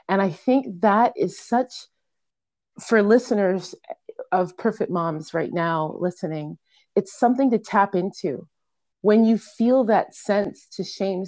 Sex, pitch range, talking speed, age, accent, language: female, 175-215 Hz, 140 wpm, 30-49, American, English